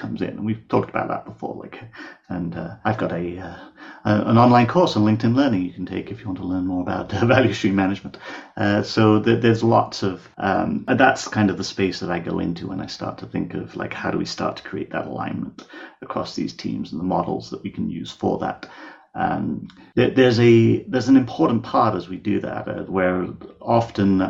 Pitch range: 90-110 Hz